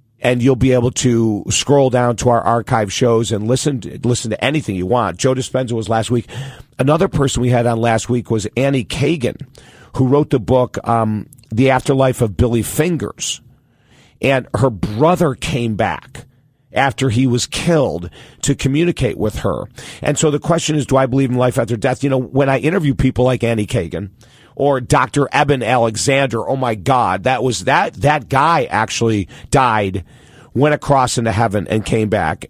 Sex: male